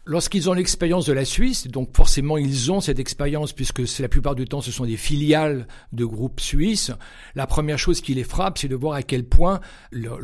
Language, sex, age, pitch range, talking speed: French, male, 60-79, 135-185 Hz, 225 wpm